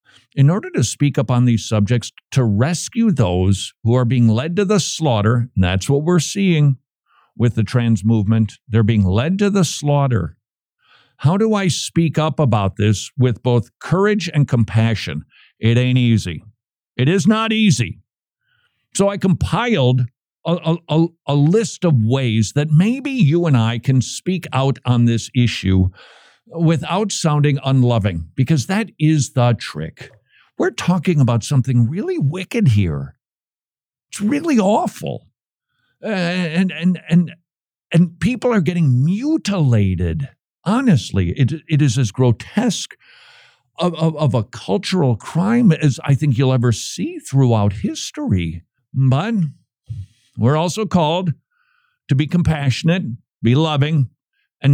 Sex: male